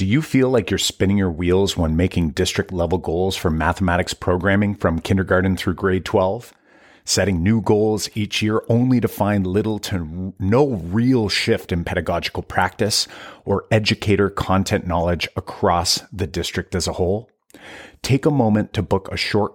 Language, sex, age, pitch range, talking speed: English, male, 30-49, 90-115 Hz, 165 wpm